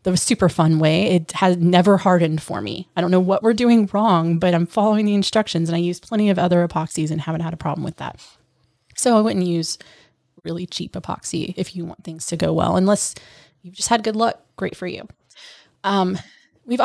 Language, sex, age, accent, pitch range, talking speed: English, female, 20-39, American, 165-195 Hz, 215 wpm